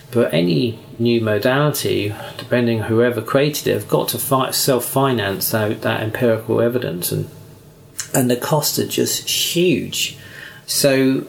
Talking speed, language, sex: 140 wpm, English, male